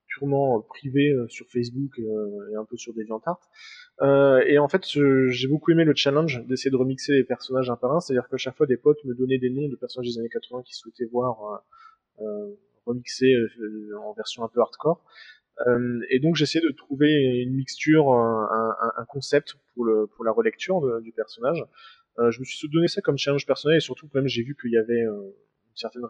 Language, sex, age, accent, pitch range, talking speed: French, male, 20-39, French, 120-150 Hz, 195 wpm